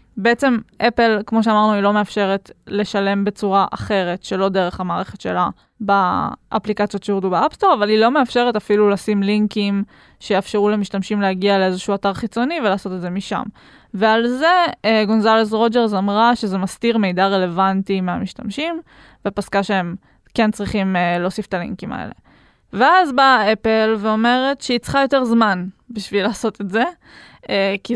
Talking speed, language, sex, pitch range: 140 wpm, Hebrew, female, 195-240 Hz